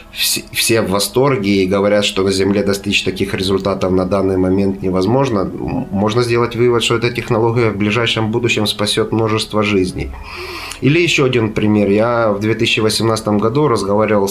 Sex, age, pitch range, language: male, 30-49, 95-105 Hz, Russian